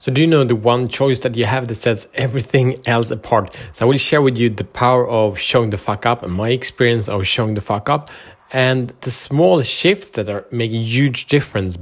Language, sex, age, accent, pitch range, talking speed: Swedish, male, 30-49, Norwegian, 105-130 Hz, 230 wpm